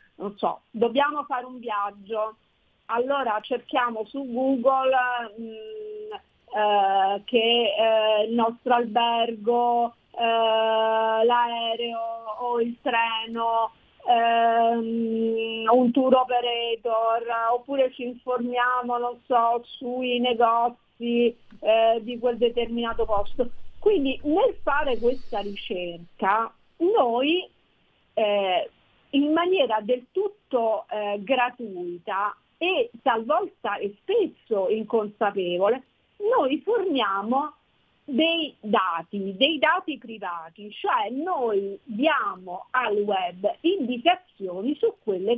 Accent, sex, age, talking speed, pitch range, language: native, female, 40-59, 95 wpm, 220-270 Hz, Italian